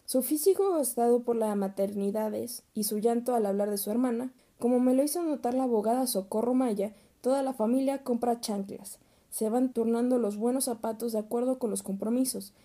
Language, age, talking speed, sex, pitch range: Spanish, 20-39, 185 wpm, female, 215-260 Hz